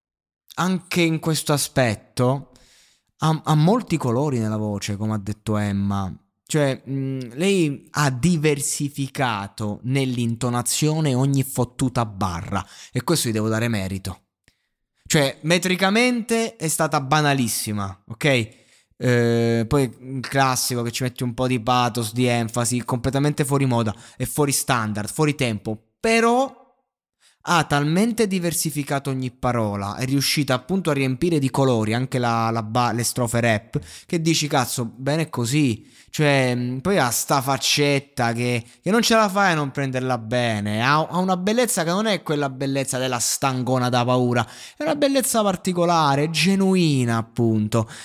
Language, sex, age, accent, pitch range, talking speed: Italian, male, 20-39, native, 120-165 Hz, 140 wpm